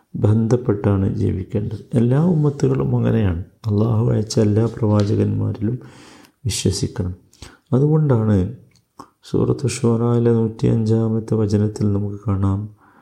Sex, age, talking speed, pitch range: male, 50-69, 80 wpm, 105-125 Hz